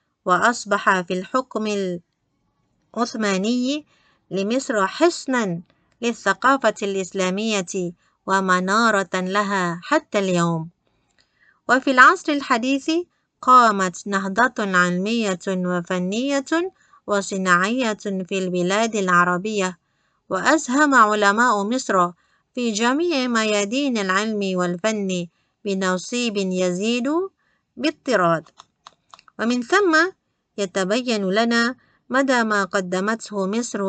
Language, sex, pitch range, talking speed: Malay, female, 185-245 Hz, 75 wpm